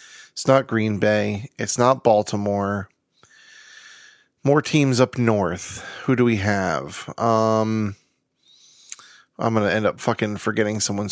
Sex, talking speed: male, 130 wpm